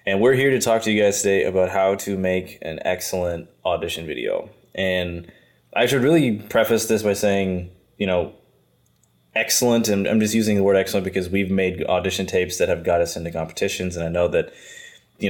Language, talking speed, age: English, 200 wpm, 20-39